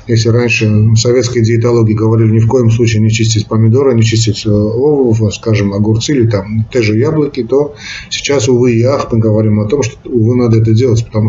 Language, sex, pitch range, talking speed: Russian, male, 110-120 Hz, 195 wpm